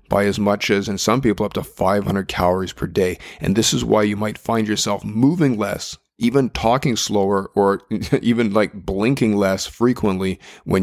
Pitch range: 100-115 Hz